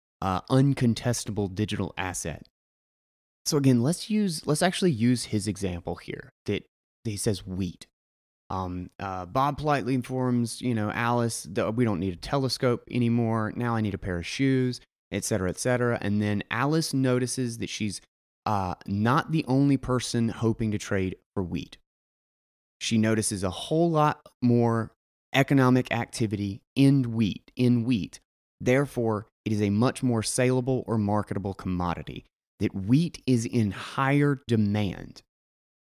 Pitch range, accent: 105-135 Hz, American